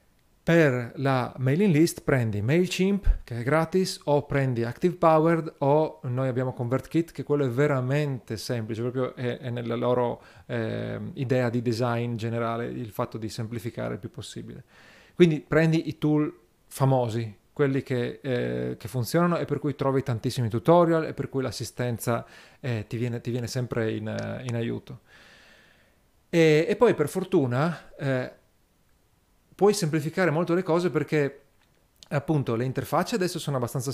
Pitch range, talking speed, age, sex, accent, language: 120-160 Hz, 145 wpm, 40-59, male, native, Italian